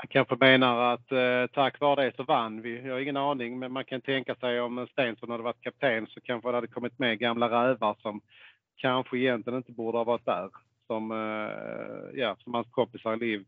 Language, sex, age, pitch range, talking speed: Swedish, male, 40-59, 110-130 Hz, 215 wpm